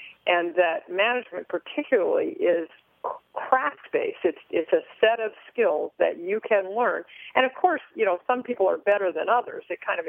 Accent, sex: American, female